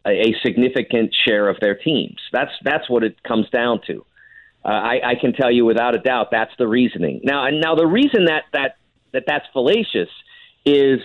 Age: 50-69